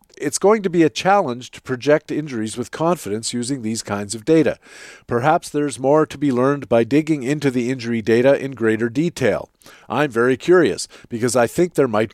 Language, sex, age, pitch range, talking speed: English, male, 50-69, 115-150 Hz, 195 wpm